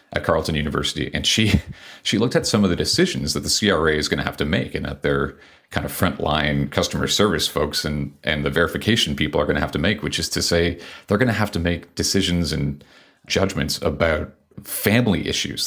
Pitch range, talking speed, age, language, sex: 75-95 Hz, 220 wpm, 40-59, English, male